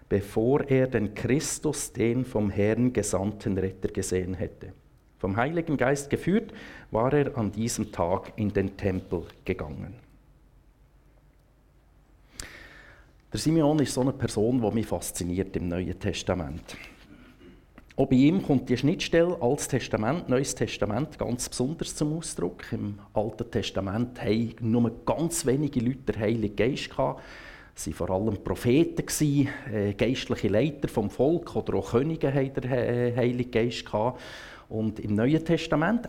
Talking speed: 135 wpm